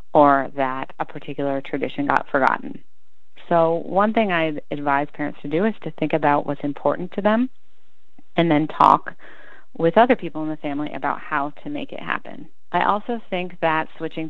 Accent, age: American, 30-49